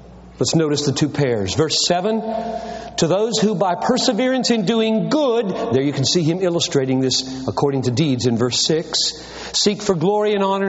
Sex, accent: male, American